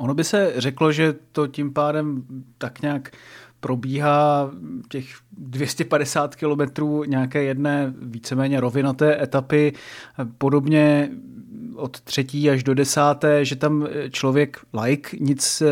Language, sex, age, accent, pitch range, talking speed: Czech, male, 30-49, native, 130-145 Hz, 115 wpm